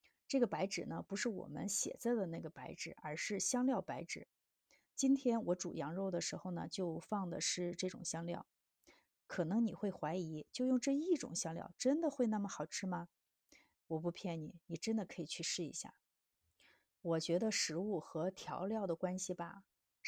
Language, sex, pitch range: Chinese, female, 175-230 Hz